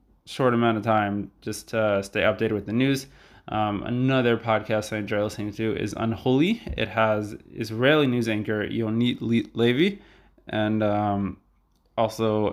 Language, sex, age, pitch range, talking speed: English, male, 20-39, 105-120 Hz, 145 wpm